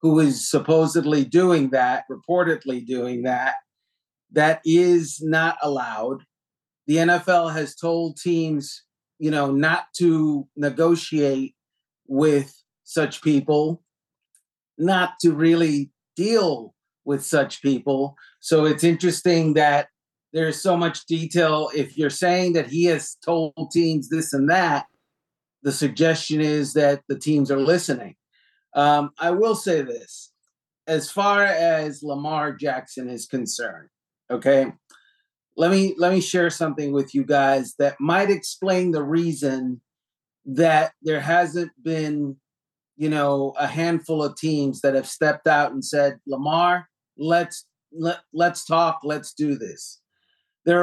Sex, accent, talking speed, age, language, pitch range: male, American, 130 wpm, 40-59, English, 140-170 Hz